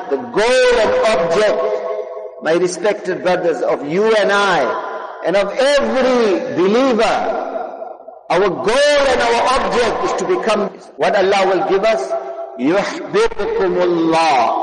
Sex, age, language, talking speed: male, 50-69, English, 120 wpm